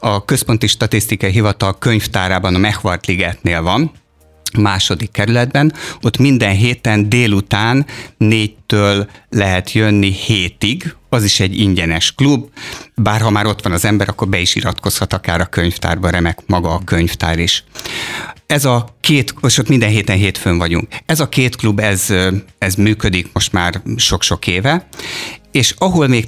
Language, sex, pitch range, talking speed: Hungarian, male, 90-115 Hz, 150 wpm